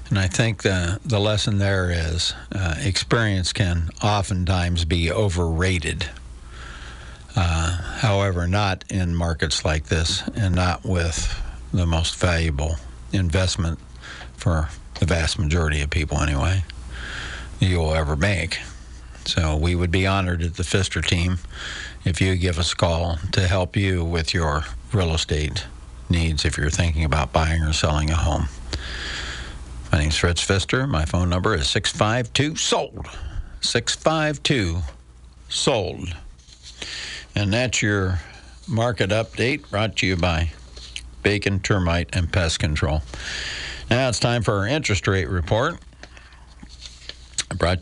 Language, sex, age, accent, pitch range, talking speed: English, male, 60-79, American, 75-100 Hz, 135 wpm